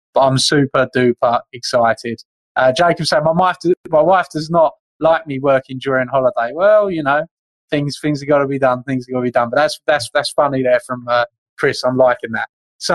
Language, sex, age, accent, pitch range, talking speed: English, male, 20-39, British, 120-145 Hz, 210 wpm